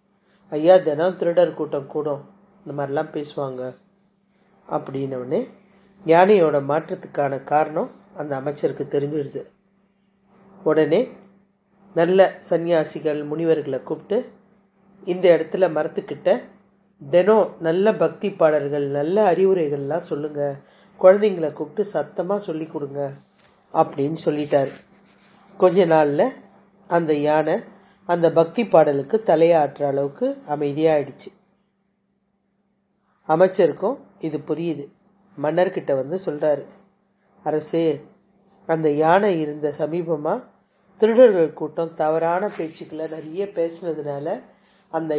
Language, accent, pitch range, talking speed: Tamil, native, 150-195 Hz, 85 wpm